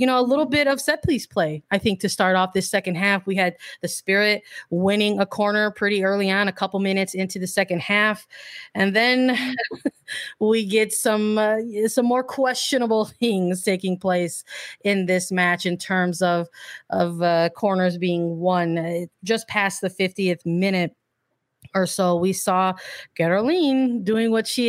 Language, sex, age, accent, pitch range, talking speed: English, female, 30-49, American, 180-215 Hz, 170 wpm